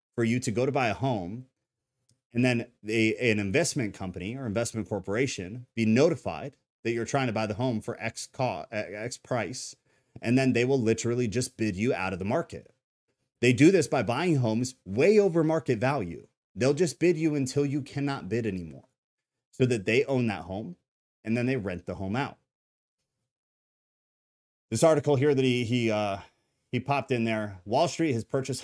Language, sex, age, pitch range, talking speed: English, male, 30-49, 105-130 Hz, 190 wpm